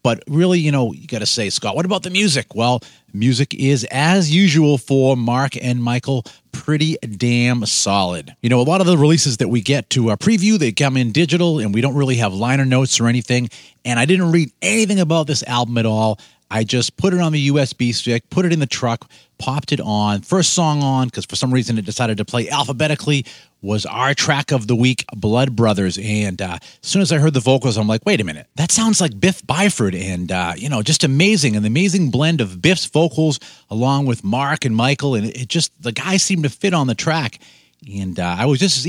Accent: American